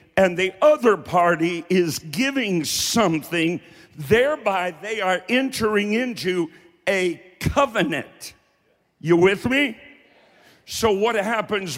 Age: 50-69